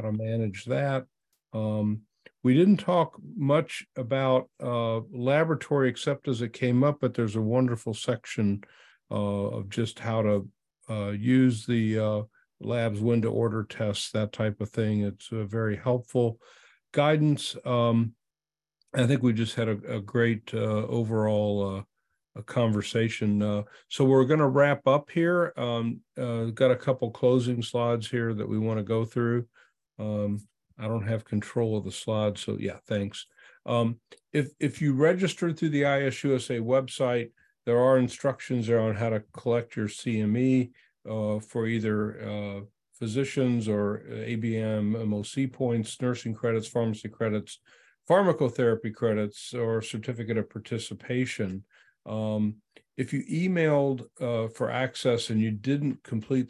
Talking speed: 145 wpm